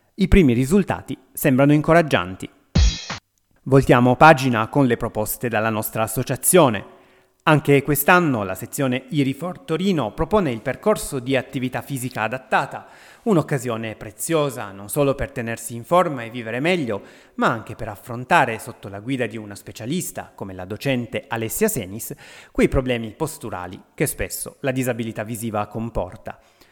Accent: native